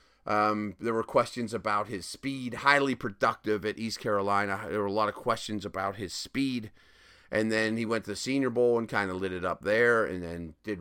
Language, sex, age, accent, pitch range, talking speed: English, male, 30-49, American, 105-135 Hz, 215 wpm